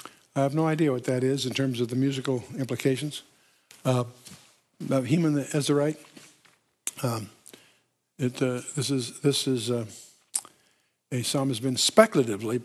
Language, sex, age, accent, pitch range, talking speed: English, male, 60-79, American, 125-165 Hz, 140 wpm